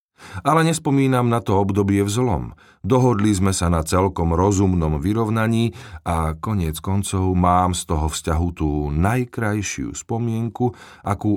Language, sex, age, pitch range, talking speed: Slovak, male, 40-59, 85-120 Hz, 130 wpm